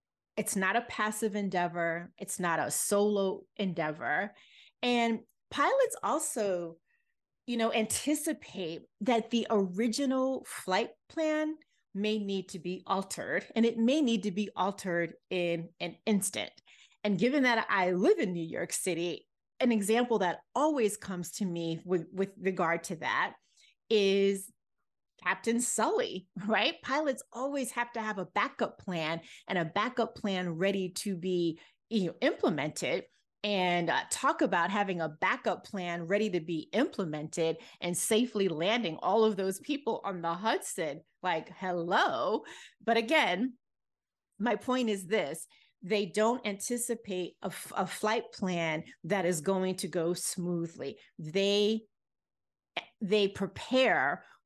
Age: 30-49